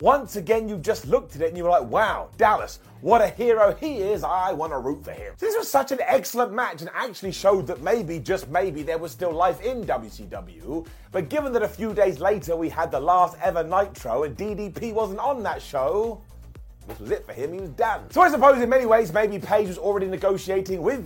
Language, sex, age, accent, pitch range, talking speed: English, male, 30-49, British, 160-225 Hz, 235 wpm